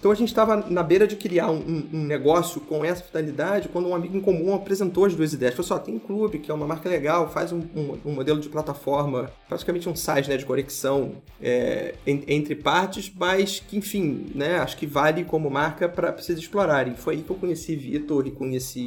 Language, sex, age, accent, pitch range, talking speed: Portuguese, male, 30-49, Brazilian, 135-170 Hz, 220 wpm